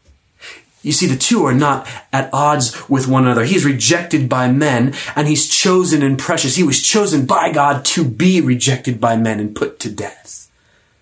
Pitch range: 110-150 Hz